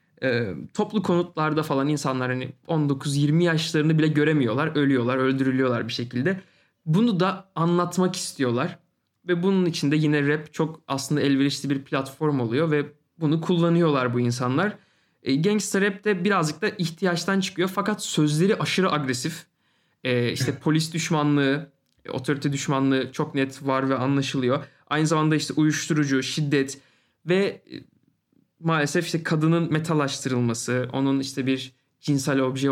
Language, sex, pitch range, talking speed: Turkish, male, 135-180 Hz, 135 wpm